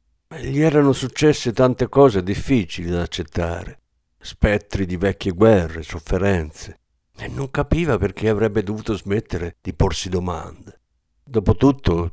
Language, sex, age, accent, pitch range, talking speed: Italian, male, 60-79, native, 90-125 Hz, 120 wpm